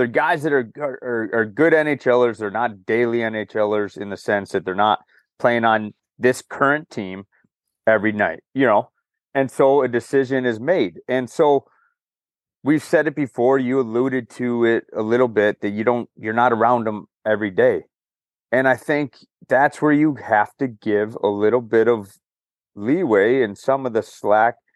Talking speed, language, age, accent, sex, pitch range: 180 wpm, English, 30-49, American, male, 105-130 Hz